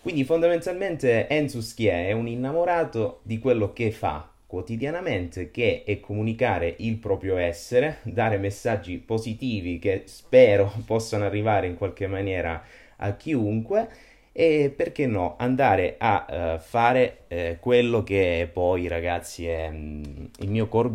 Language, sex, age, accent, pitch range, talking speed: Italian, male, 20-39, native, 85-110 Hz, 130 wpm